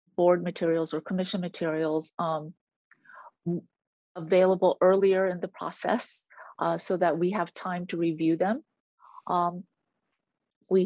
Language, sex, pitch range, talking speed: English, female, 170-210 Hz, 120 wpm